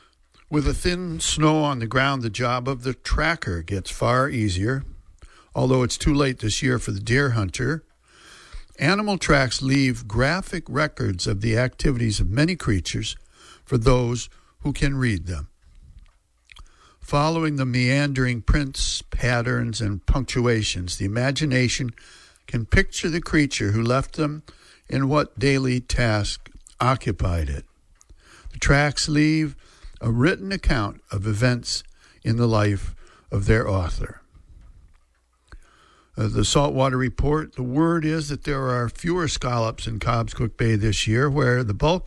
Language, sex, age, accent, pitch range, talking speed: English, male, 60-79, American, 105-140 Hz, 140 wpm